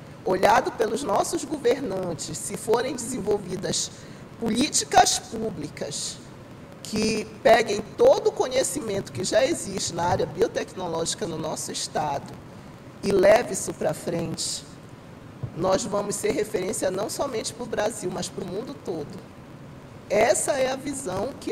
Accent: Brazilian